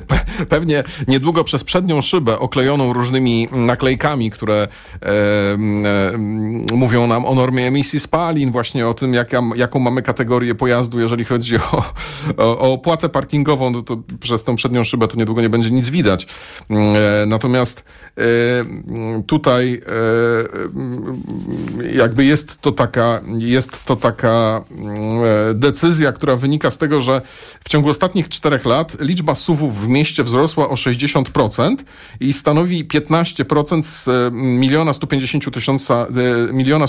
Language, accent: Polish, native